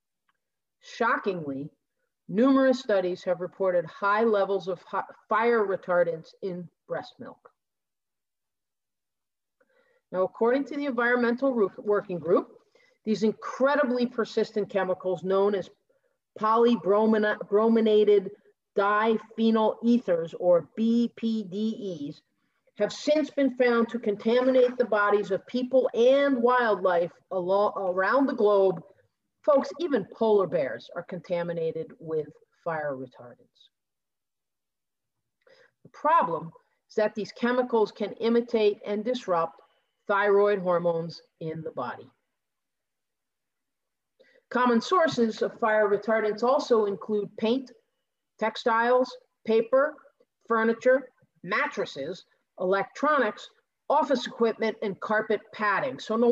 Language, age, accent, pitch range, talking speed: English, 40-59, American, 190-255 Hz, 95 wpm